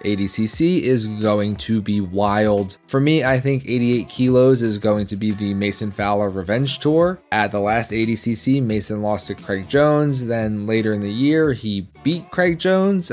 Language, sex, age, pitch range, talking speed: English, male, 20-39, 105-140 Hz, 180 wpm